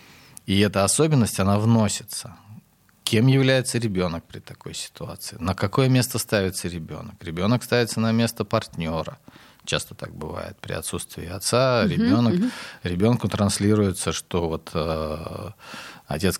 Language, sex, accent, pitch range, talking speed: Russian, male, native, 85-110 Hz, 125 wpm